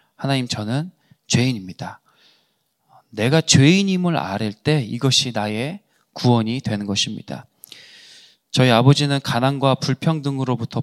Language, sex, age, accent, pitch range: Korean, male, 20-39, native, 115-150 Hz